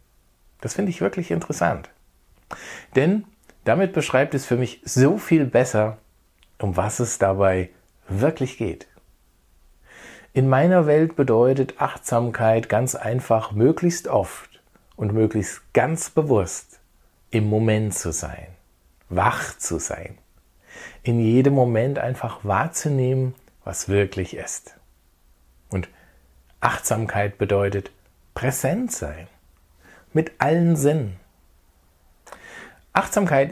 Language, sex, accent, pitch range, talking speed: German, male, German, 95-135 Hz, 100 wpm